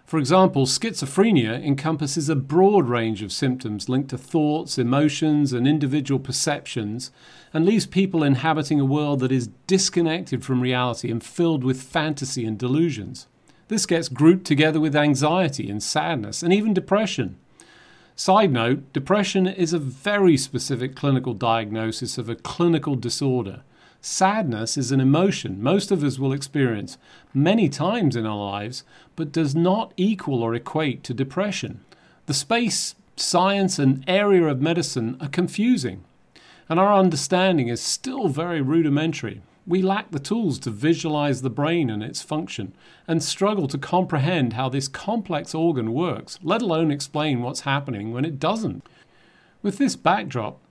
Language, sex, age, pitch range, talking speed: English, male, 40-59, 125-170 Hz, 150 wpm